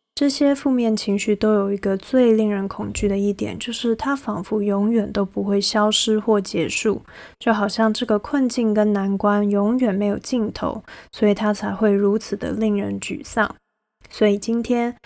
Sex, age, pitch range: female, 20-39, 205-230 Hz